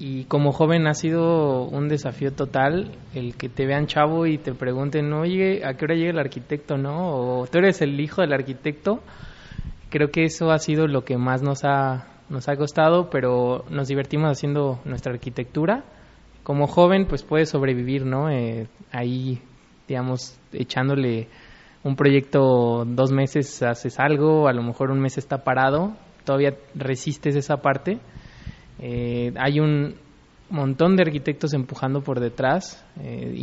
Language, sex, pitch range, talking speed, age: Spanish, male, 125-150 Hz, 155 wpm, 20-39